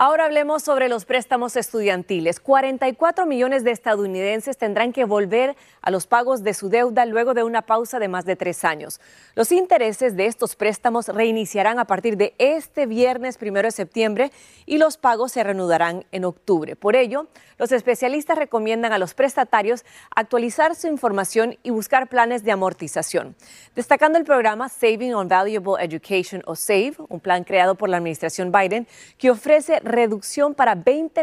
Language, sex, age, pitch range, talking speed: Spanish, female, 30-49, 190-250 Hz, 165 wpm